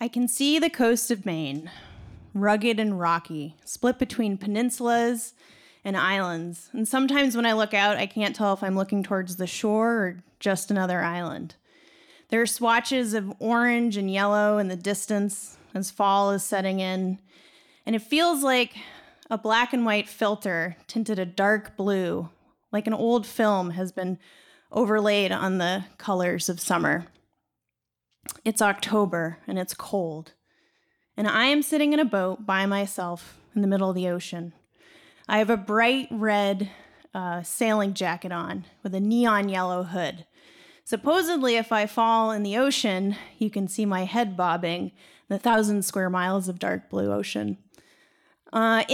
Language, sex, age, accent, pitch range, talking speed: English, female, 30-49, American, 185-230 Hz, 160 wpm